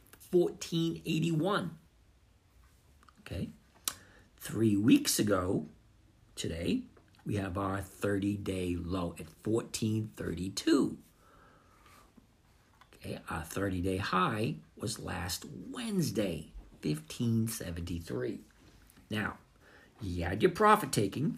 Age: 60-79